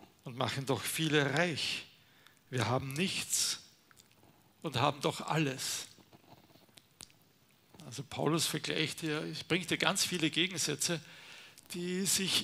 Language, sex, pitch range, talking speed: German, male, 130-160 Hz, 105 wpm